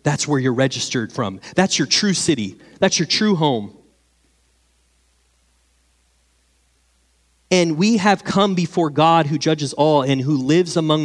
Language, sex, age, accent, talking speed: English, male, 30-49, American, 140 wpm